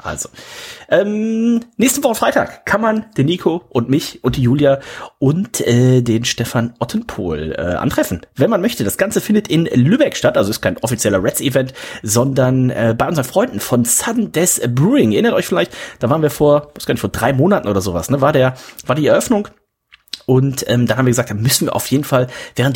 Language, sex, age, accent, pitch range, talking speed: German, male, 30-49, German, 125-170 Hz, 210 wpm